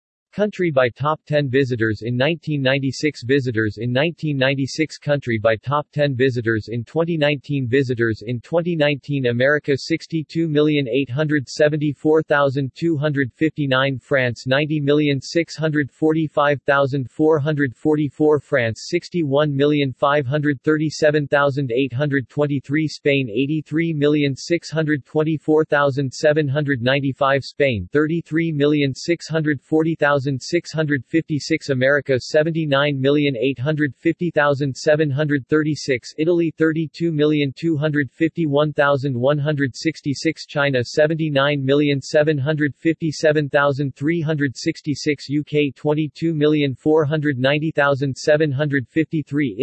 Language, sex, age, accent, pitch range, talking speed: English, male, 40-59, American, 140-155 Hz, 45 wpm